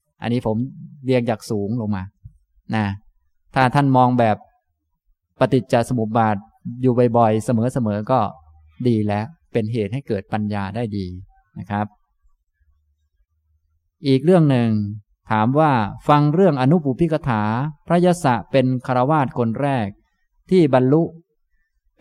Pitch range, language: 105-140 Hz, Thai